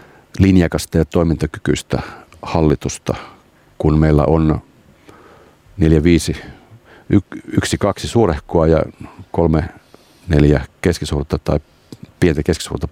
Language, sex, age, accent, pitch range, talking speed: Finnish, male, 50-69, native, 75-85 Hz, 70 wpm